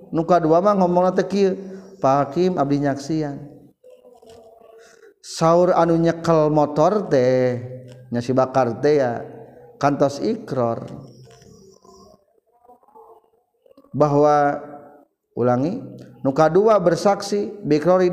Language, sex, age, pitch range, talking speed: Indonesian, male, 50-69, 130-195 Hz, 85 wpm